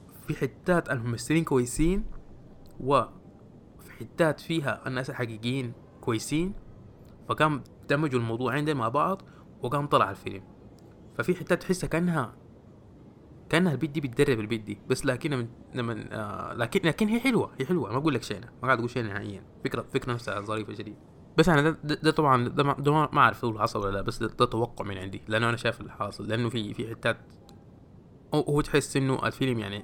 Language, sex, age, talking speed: Arabic, male, 20-39, 165 wpm